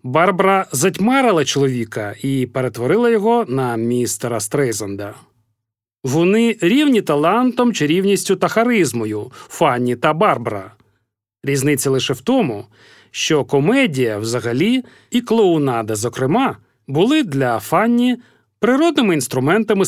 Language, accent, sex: Ukrainian, native, male